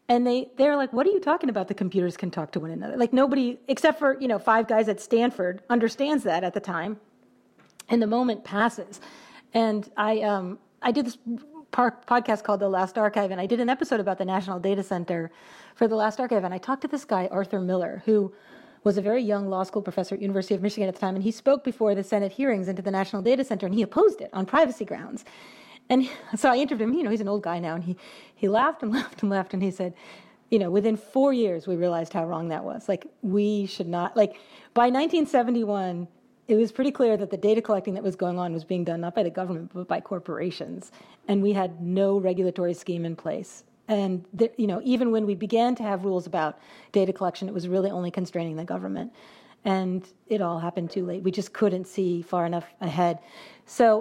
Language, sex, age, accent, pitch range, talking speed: English, female, 40-59, American, 185-240 Hz, 230 wpm